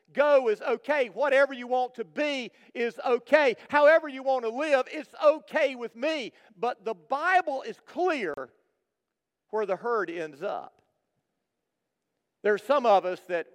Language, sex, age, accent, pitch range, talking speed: English, male, 50-69, American, 205-265 Hz, 155 wpm